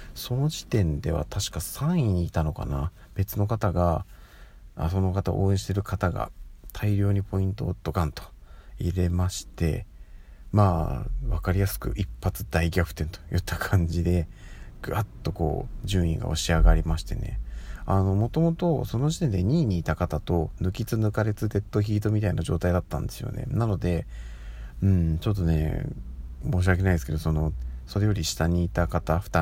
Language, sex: Japanese, male